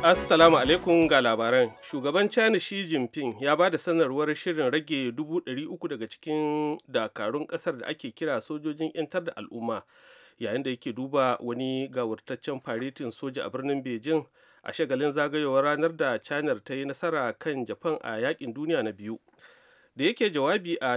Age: 40-59